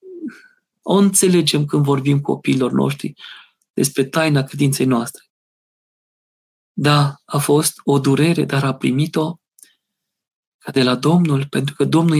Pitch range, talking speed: 140-180 Hz, 130 wpm